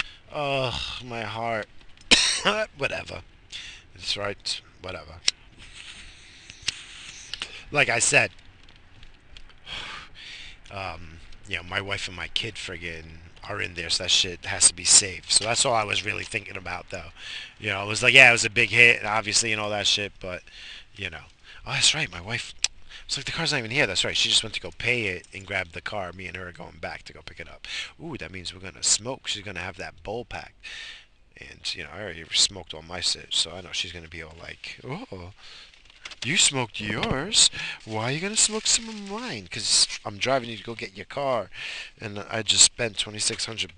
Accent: American